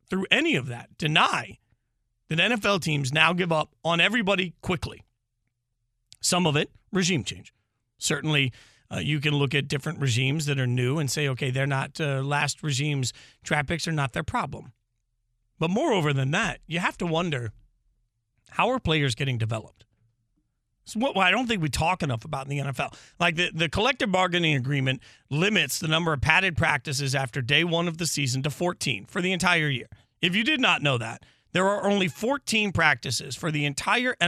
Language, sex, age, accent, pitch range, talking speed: English, male, 40-59, American, 125-180 Hz, 180 wpm